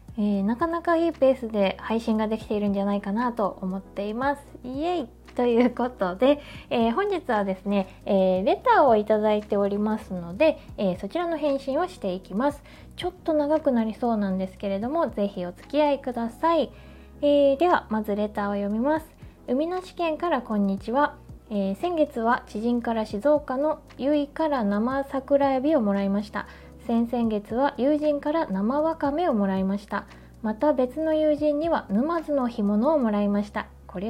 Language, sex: Japanese, female